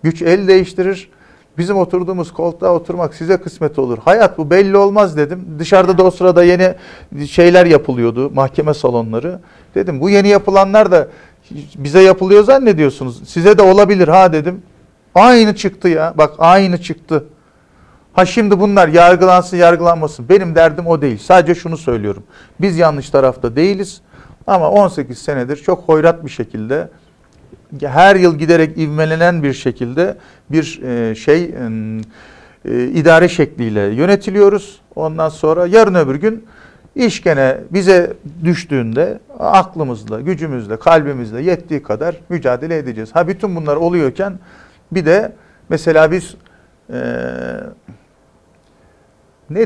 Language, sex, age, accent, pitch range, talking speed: Turkish, male, 50-69, native, 145-185 Hz, 125 wpm